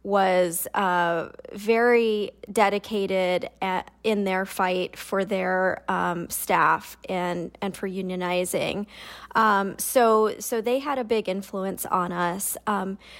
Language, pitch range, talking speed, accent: English, 185-225 Hz, 125 wpm, American